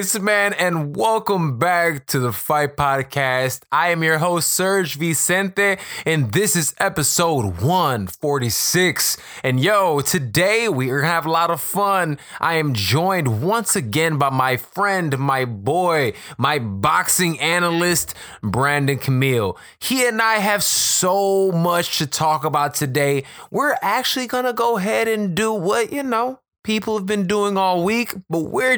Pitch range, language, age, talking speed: 135-195 Hz, English, 20-39, 150 wpm